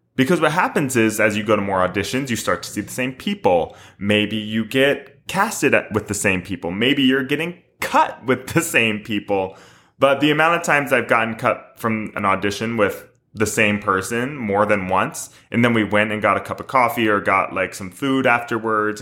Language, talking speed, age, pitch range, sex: English, 210 wpm, 20-39, 100-130 Hz, male